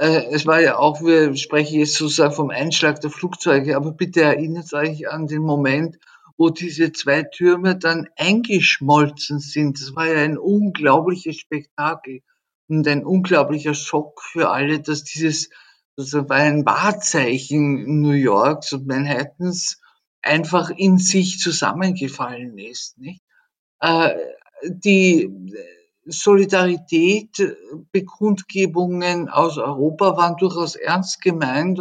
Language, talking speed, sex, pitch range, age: German, 120 wpm, male, 150-180 Hz, 50-69